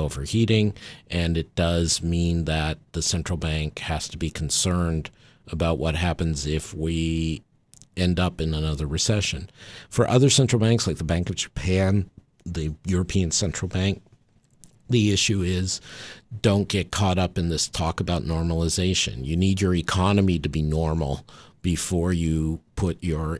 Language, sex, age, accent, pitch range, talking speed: English, male, 50-69, American, 80-100 Hz, 150 wpm